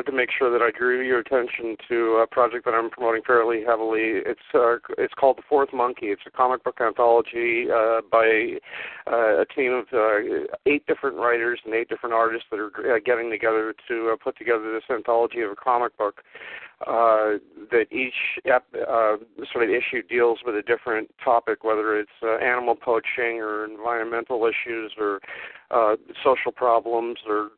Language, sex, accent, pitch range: English, male, American, 115-135 Hz